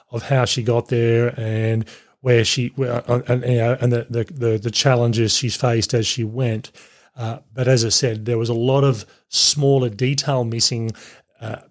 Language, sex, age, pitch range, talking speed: English, male, 30-49, 115-135 Hz, 180 wpm